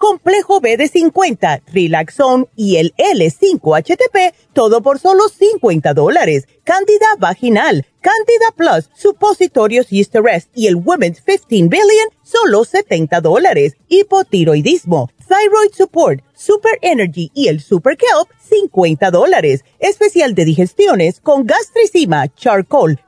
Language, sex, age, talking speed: Spanish, female, 40-59, 115 wpm